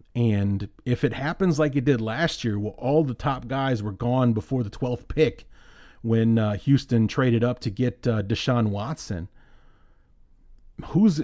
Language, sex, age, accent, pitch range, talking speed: English, male, 30-49, American, 115-140 Hz, 165 wpm